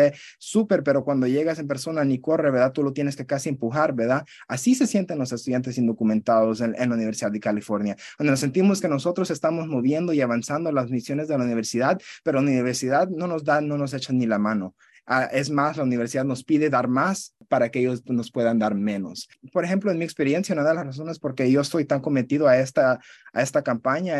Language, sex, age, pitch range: English, male, 30-49, 125-160 Hz